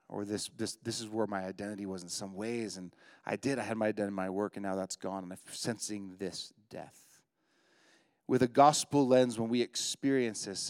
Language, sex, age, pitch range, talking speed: English, male, 30-49, 100-120 Hz, 220 wpm